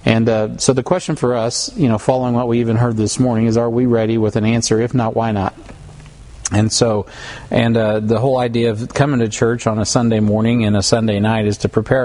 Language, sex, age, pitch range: English, male, 40-59, 105-125 Hz